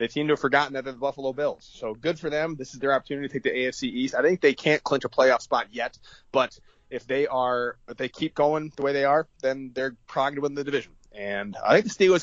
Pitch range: 115-155 Hz